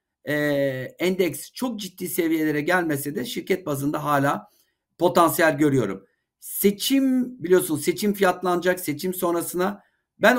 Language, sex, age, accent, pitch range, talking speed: Turkish, male, 50-69, native, 150-195 Hz, 110 wpm